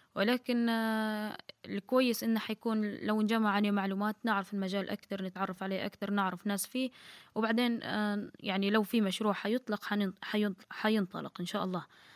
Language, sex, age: Arabic, female, 10-29